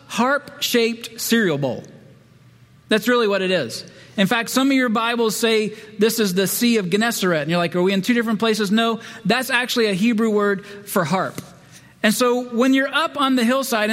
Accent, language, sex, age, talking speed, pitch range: American, English, male, 40-59, 200 wpm, 200-240 Hz